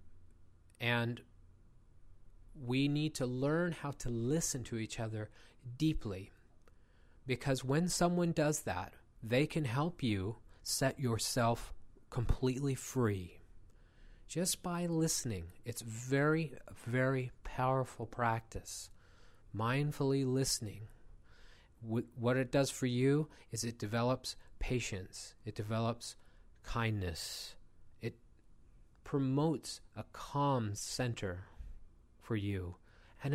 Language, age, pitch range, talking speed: English, 40-59, 100-140 Hz, 100 wpm